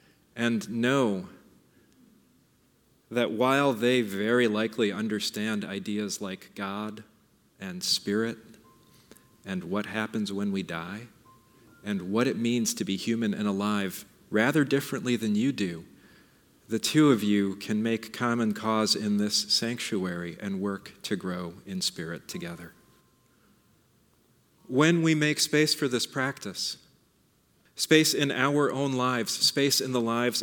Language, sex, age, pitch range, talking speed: English, male, 40-59, 105-135 Hz, 130 wpm